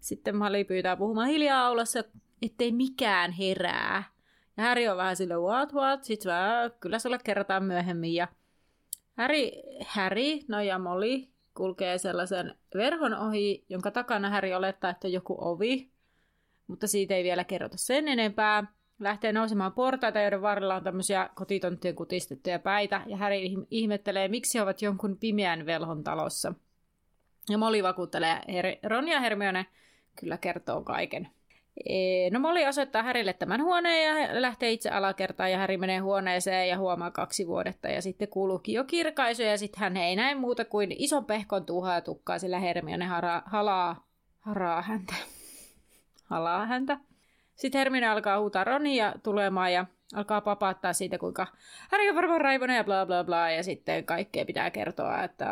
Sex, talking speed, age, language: female, 155 wpm, 30-49, Finnish